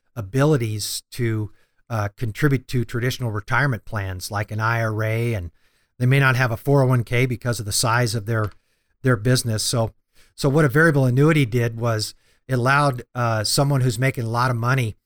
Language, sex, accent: English, male, American